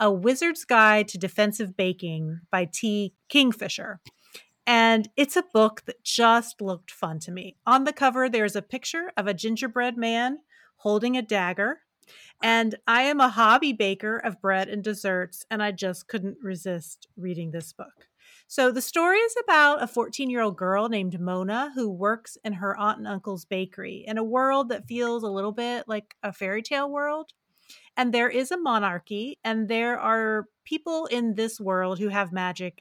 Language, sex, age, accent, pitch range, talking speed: English, female, 30-49, American, 195-255 Hz, 175 wpm